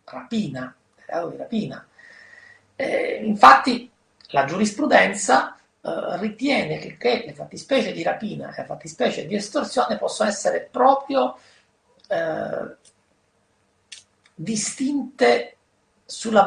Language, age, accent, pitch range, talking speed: Italian, 40-59, native, 160-250 Hz, 90 wpm